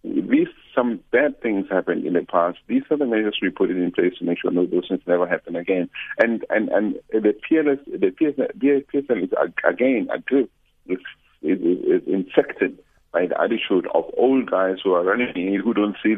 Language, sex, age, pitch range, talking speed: English, male, 50-69, 90-125 Hz, 190 wpm